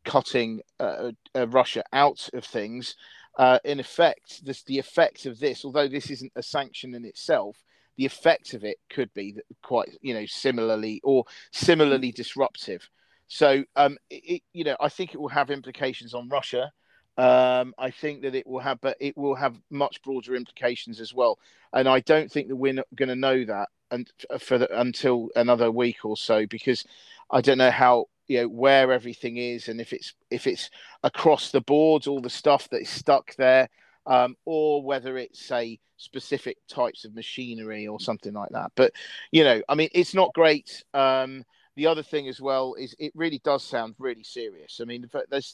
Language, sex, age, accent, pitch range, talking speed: English, male, 40-59, British, 120-140 Hz, 190 wpm